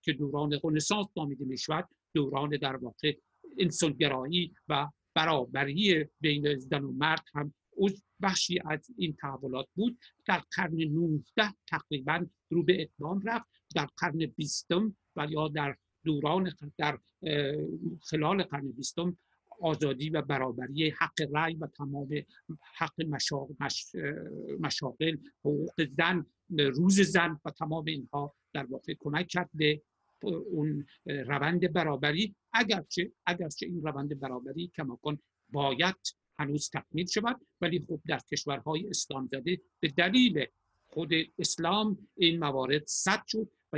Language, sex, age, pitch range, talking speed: Persian, male, 60-79, 145-175 Hz, 125 wpm